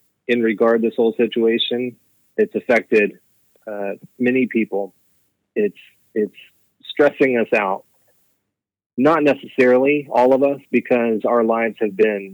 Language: English